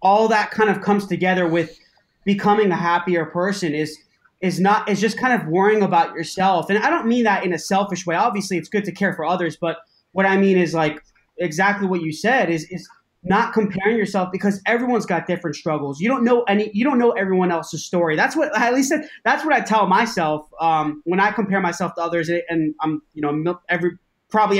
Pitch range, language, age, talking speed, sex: 170-210 Hz, English, 20-39, 220 wpm, male